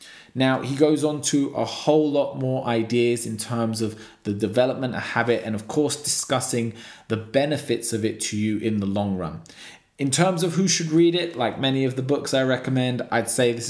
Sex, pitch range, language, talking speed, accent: male, 110-140 Hz, English, 210 wpm, British